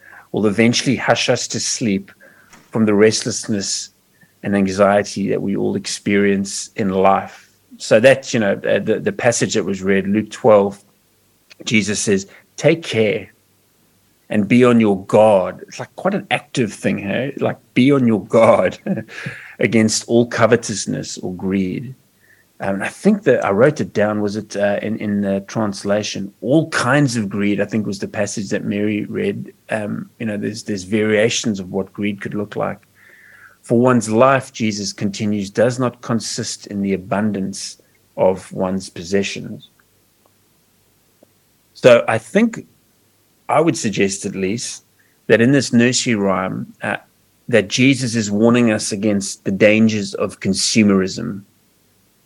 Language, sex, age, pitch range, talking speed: English, male, 30-49, 100-120 Hz, 150 wpm